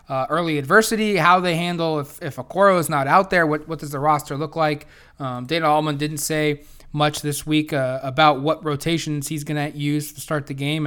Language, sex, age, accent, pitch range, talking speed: English, male, 20-39, American, 140-170 Hz, 220 wpm